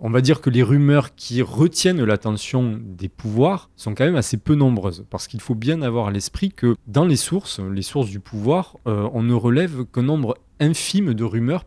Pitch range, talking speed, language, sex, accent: 105-140 Hz, 210 wpm, French, male, French